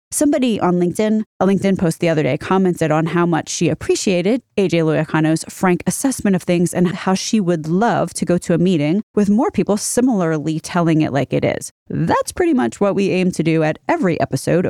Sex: female